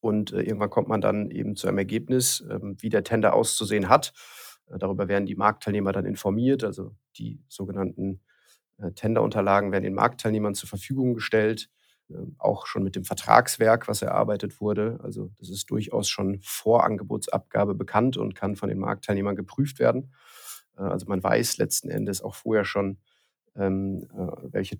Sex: male